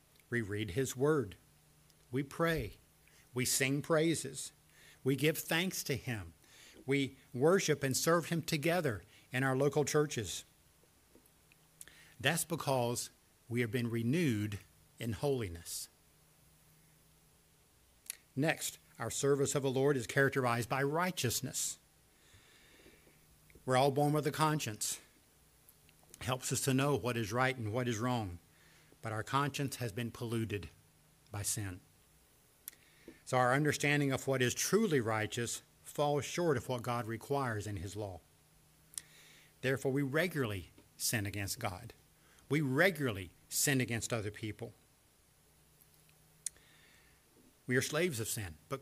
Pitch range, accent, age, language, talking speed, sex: 115-145 Hz, American, 60-79, English, 125 wpm, male